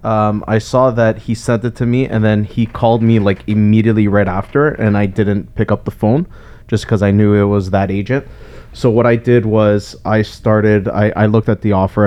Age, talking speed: 20-39, 230 wpm